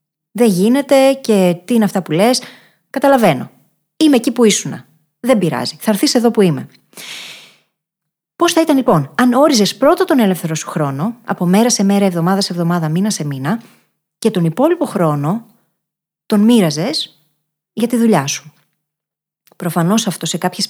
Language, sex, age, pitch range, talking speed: Greek, female, 20-39, 165-240 Hz, 160 wpm